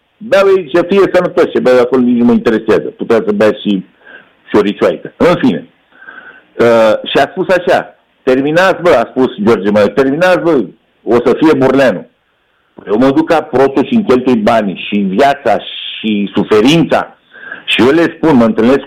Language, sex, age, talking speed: Romanian, male, 60-79, 170 wpm